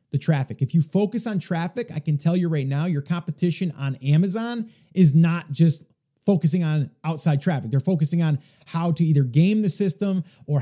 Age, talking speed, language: 30-49, 190 wpm, English